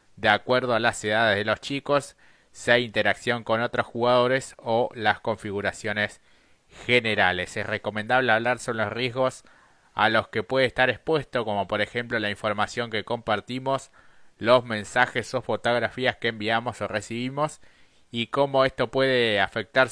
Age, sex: 20-39, male